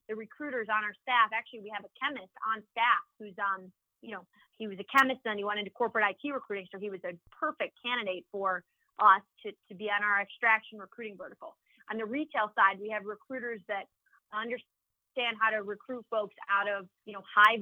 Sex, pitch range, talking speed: female, 200-240 Hz, 210 wpm